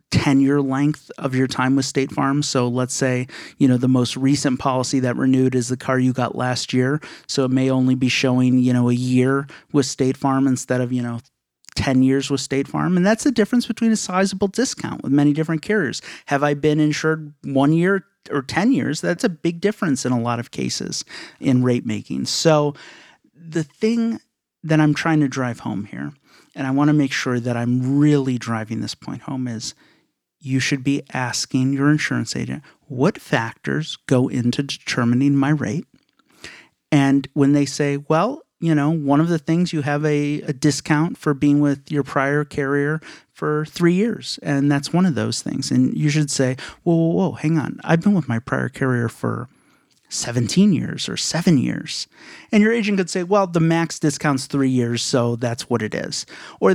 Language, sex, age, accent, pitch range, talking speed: English, male, 30-49, American, 130-160 Hz, 200 wpm